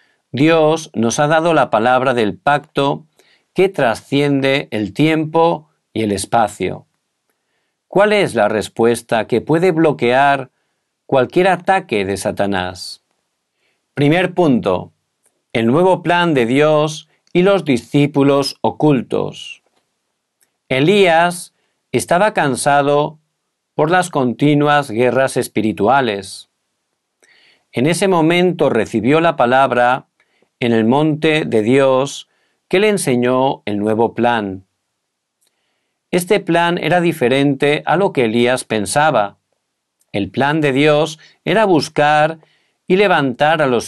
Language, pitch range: Korean, 120-165 Hz